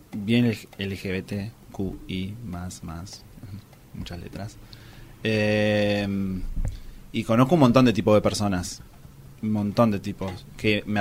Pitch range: 100-130 Hz